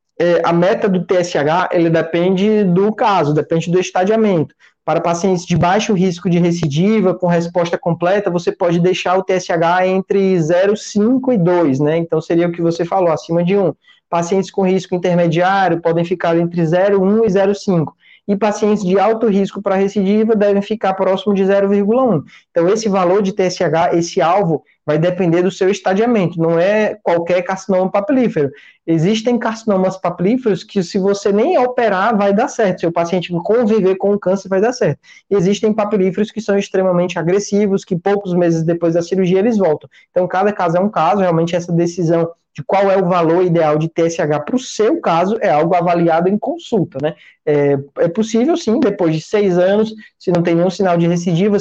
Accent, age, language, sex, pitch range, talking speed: Brazilian, 20-39, Portuguese, male, 170-205 Hz, 185 wpm